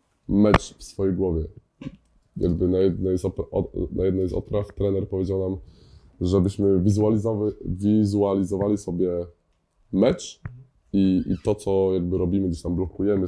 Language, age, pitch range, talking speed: Polish, 20-39, 90-100 Hz, 115 wpm